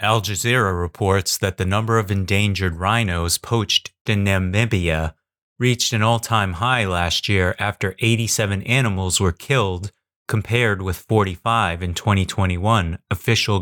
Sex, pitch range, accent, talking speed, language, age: male, 95-115 Hz, American, 130 wpm, English, 30-49